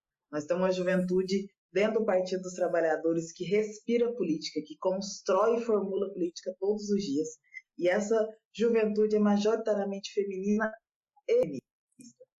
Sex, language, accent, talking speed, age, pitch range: female, Portuguese, Brazilian, 135 wpm, 20-39, 160-200 Hz